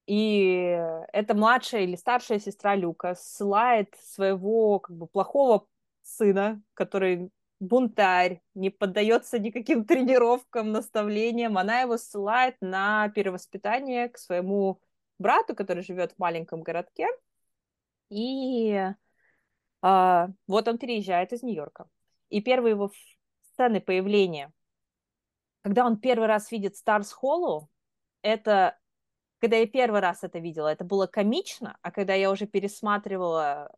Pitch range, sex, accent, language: 190-235 Hz, female, native, Russian